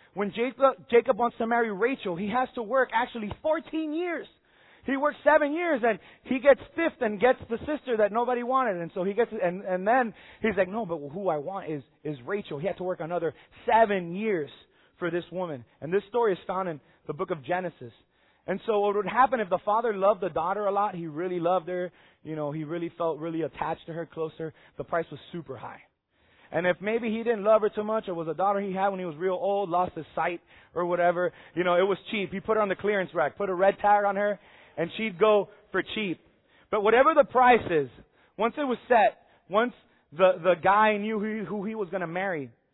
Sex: male